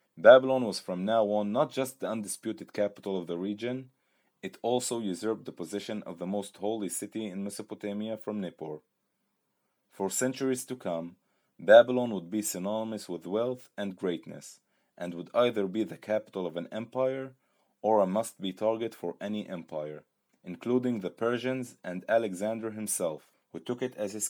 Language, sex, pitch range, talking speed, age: English, male, 90-110 Hz, 165 wpm, 30-49